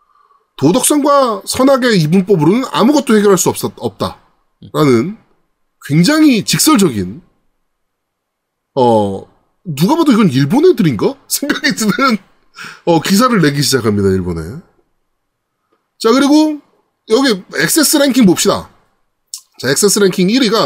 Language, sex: Korean, male